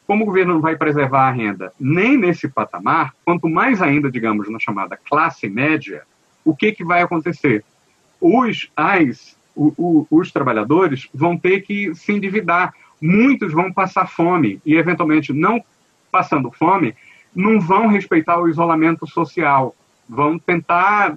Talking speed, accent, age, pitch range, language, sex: 145 wpm, Brazilian, 40-59, 140-190 Hz, Portuguese, male